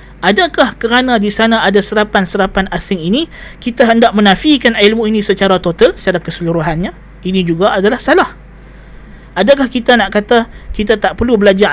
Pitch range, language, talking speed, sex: 190-235 Hz, Malay, 150 wpm, male